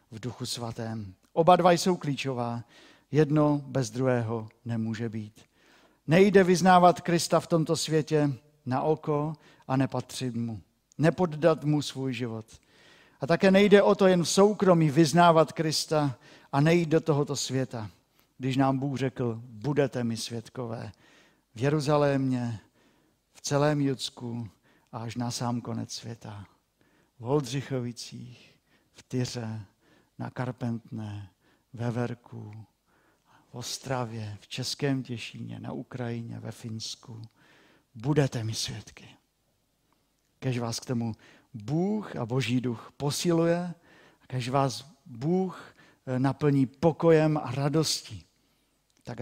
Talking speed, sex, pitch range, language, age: 115 wpm, male, 120-155 Hz, Czech, 50-69